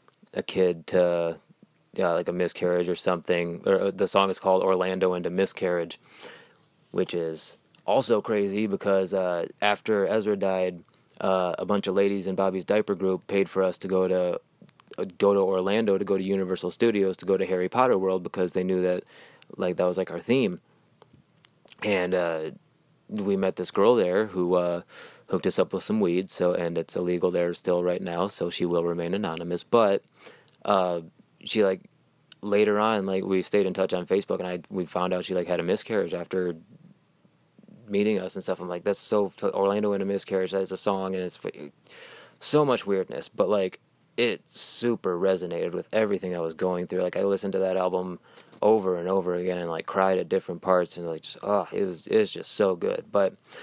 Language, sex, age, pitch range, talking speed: English, male, 20-39, 90-100 Hz, 200 wpm